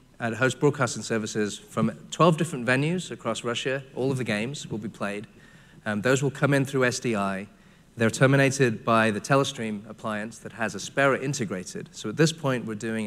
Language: English